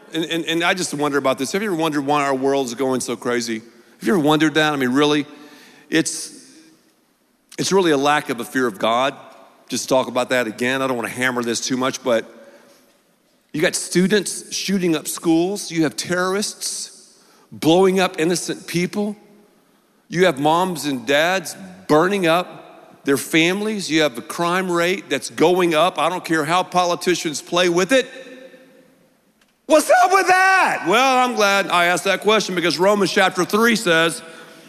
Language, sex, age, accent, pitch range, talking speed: English, male, 50-69, American, 160-220 Hz, 180 wpm